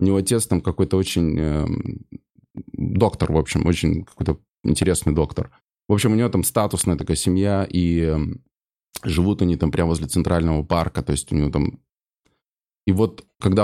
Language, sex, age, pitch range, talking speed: Russian, male, 20-39, 85-100 Hz, 170 wpm